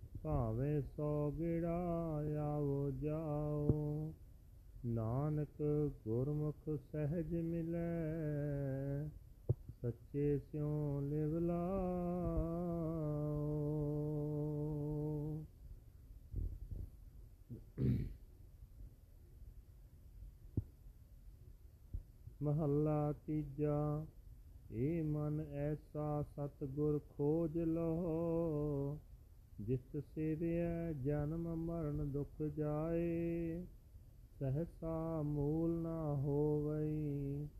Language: Punjabi